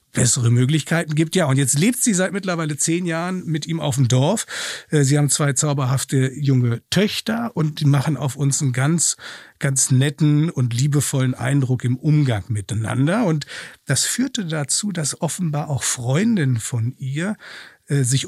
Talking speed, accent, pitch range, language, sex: 165 wpm, German, 130-160 Hz, German, male